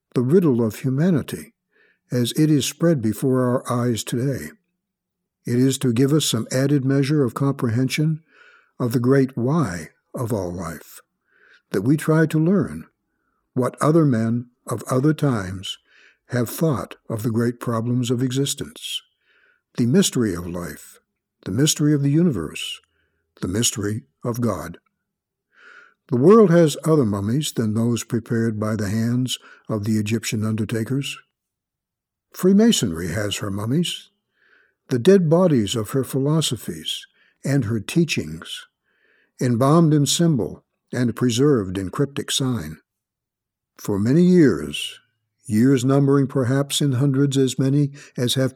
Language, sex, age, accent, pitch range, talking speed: English, male, 60-79, American, 115-145 Hz, 135 wpm